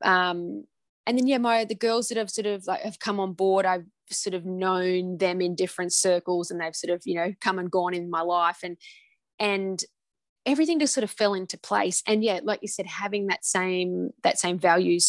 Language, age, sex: English, 20-39, female